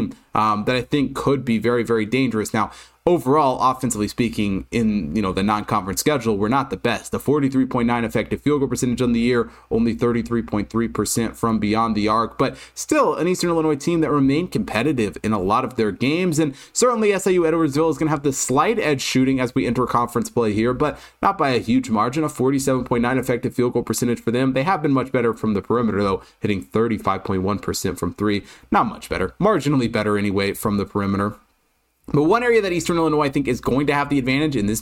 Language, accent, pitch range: English, American, 110-135 Hz